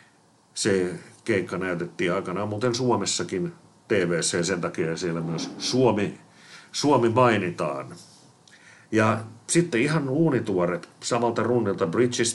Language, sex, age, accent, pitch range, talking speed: Finnish, male, 50-69, native, 85-115 Hz, 100 wpm